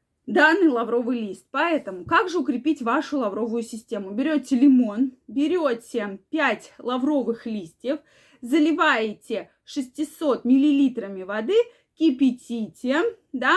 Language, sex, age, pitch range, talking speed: Russian, female, 20-39, 240-305 Hz, 95 wpm